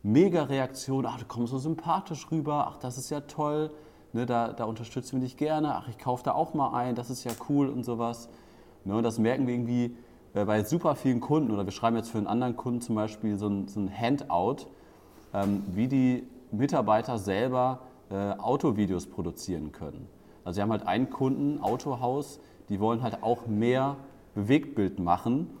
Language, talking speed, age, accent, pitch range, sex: German, 190 wpm, 30-49, German, 100-125 Hz, male